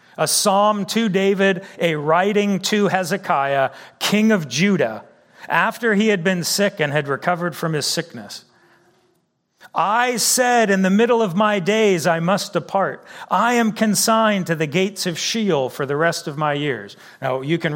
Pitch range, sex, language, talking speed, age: 145-205 Hz, male, English, 170 wpm, 40-59